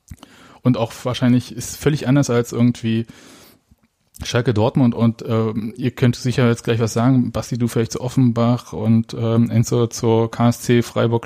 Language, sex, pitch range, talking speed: German, male, 110-130 Hz, 155 wpm